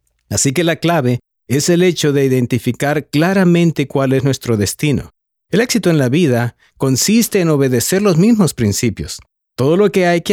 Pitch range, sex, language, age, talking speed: 125-175 Hz, male, English, 50-69, 175 wpm